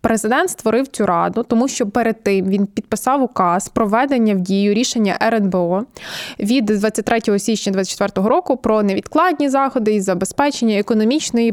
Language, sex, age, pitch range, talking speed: Ukrainian, female, 20-39, 195-240 Hz, 140 wpm